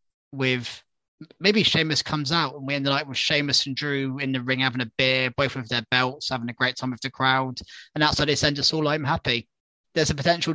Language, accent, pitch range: English, British, 125-155 Hz